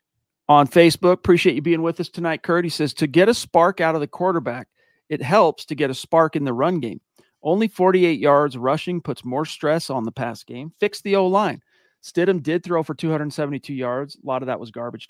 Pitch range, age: 135-160 Hz, 40-59